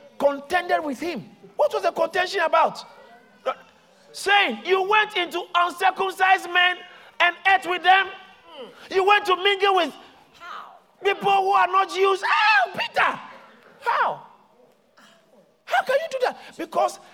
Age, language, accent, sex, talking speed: 50-69, English, Nigerian, male, 130 wpm